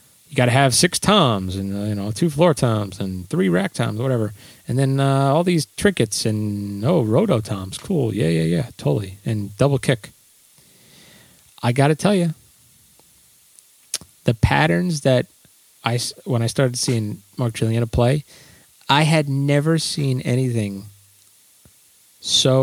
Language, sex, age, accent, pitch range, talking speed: English, male, 30-49, American, 105-130 Hz, 150 wpm